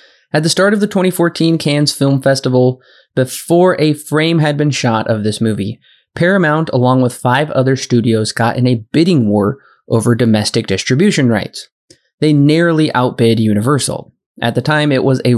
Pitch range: 115-150 Hz